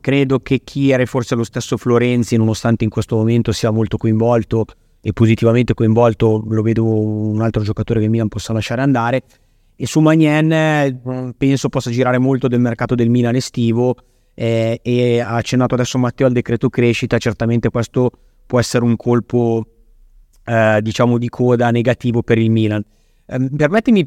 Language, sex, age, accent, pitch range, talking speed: Italian, male, 30-49, native, 115-135 Hz, 160 wpm